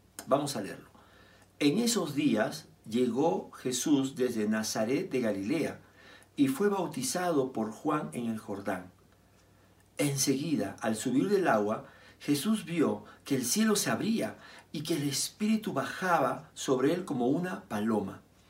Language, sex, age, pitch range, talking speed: Spanish, male, 50-69, 105-170 Hz, 135 wpm